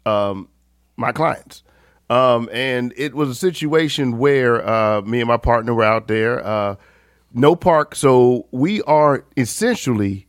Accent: American